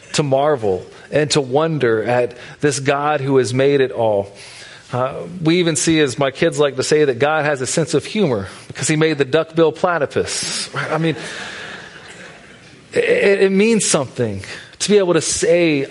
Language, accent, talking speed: English, American, 175 wpm